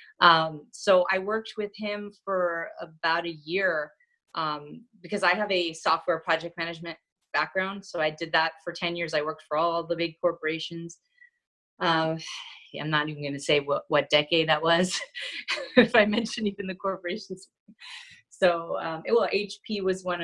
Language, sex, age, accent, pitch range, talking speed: English, female, 30-49, American, 165-200 Hz, 170 wpm